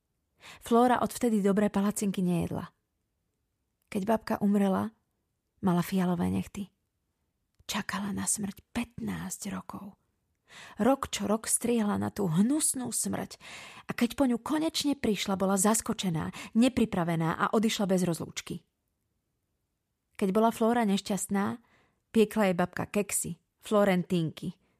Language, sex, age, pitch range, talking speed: Slovak, female, 30-49, 185-220 Hz, 115 wpm